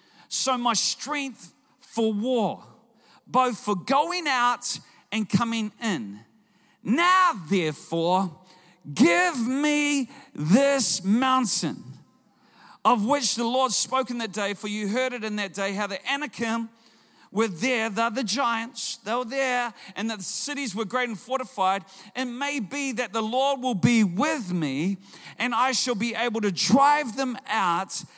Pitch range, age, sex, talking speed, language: 185-245 Hz, 40-59, male, 145 wpm, English